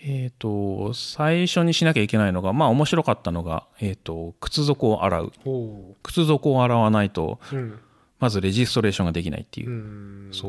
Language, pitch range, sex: Japanese, 100-140 Hz, male